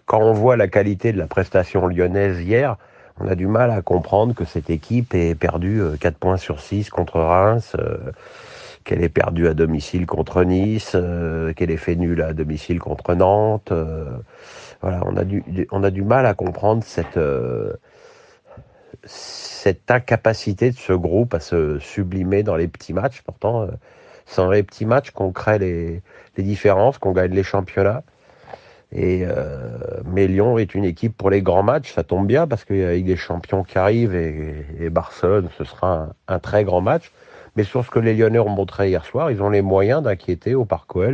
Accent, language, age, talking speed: French, French, 50-69, 185 wpm